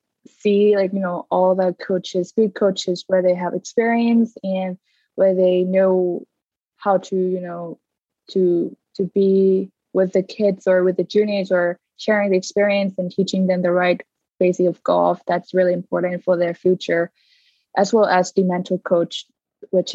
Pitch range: 180-205 Hz